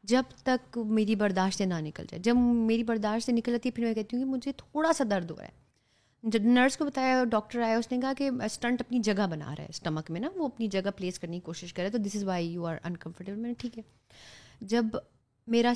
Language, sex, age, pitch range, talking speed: Urdu, female, 30-49, 180-220 Hz, 245 wpm